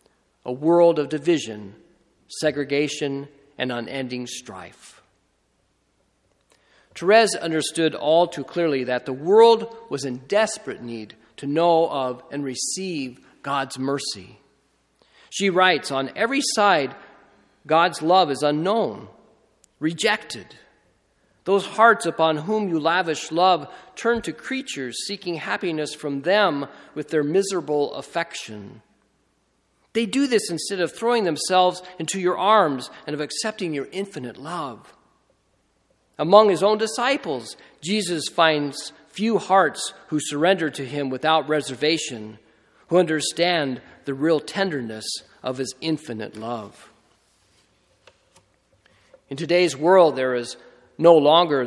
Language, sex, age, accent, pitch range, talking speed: English, male, 40-59, American, 135-180 Hz, 115 wpm